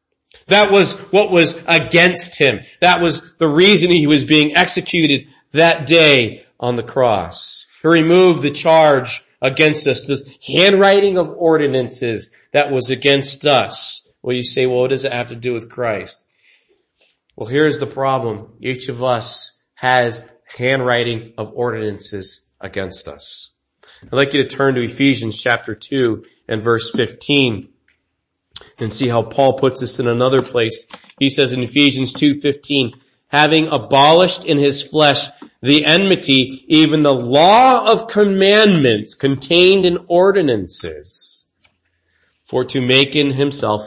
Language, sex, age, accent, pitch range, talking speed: English, male, 40-59, American, 125-165 Hz, 140 wpm